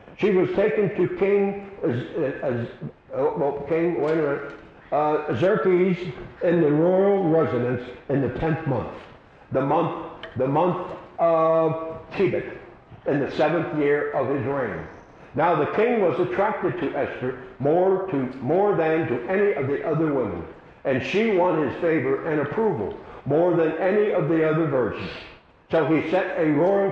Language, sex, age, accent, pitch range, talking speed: English, male, 60-79, American, 135-175 Hz, 140 wpm